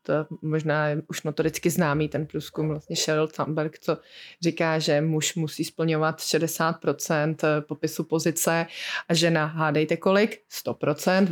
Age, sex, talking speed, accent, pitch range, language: 20-39, female, 135 wpm, native, 160-190 Hz, Czech